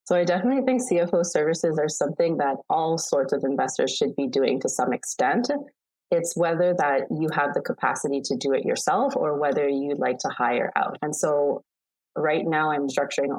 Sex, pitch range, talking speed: female, 135-170 Hz, 195 wpm